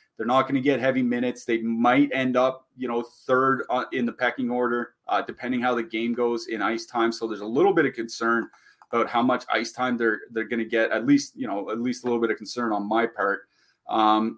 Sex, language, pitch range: male, English, 110-125 Hz